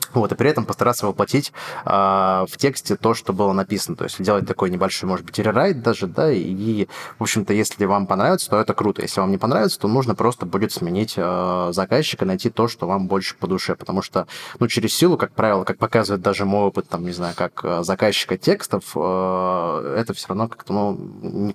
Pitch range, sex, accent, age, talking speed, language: 95-115 Hz, male, native, 20-39, 210 wpm, Russian